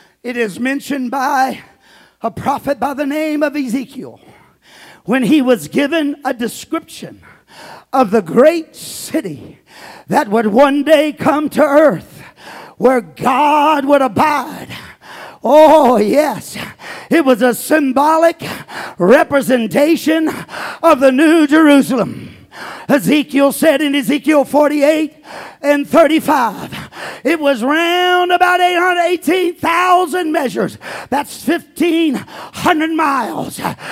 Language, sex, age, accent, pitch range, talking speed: English, male, 50-69, American, 285-340 Hz, 105 wpm